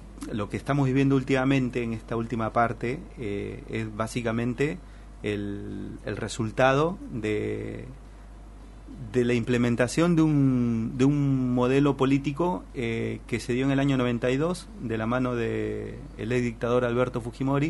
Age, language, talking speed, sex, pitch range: 30-49, Spanish, 140 wpm, male, 110-135 Hz